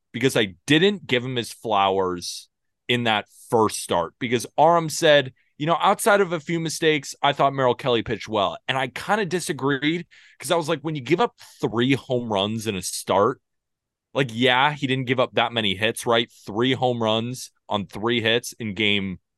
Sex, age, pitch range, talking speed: male, 20-39, 110-145 Hz, 200 wpm